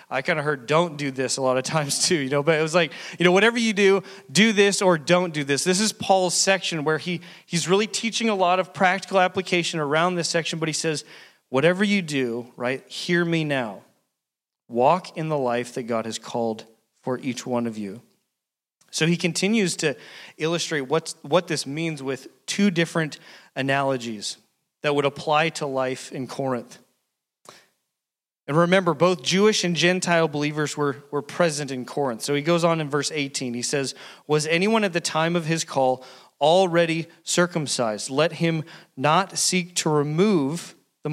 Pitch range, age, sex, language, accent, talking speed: 140-180 Hz, 30-49, male, English, American, 180 wpm